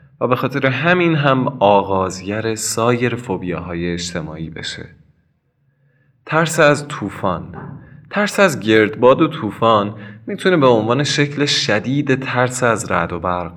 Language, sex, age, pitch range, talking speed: Persian, male, 20-39, 100-135 Hz, 120 wpm